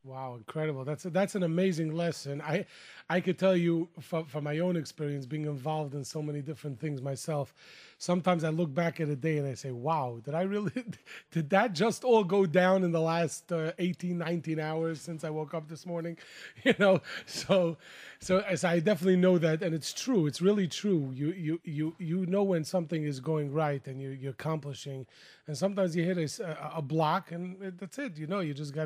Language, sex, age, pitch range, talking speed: English, male, 30-49, 150-185 Hz, 215 wpm